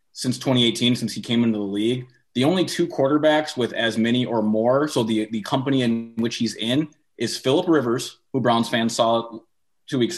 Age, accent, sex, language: 30-49, American, male, English